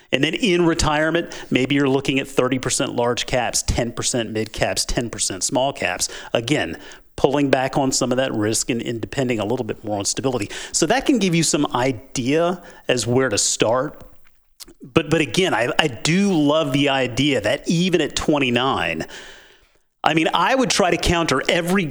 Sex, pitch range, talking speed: male, 125-165 Hz, 180 wpm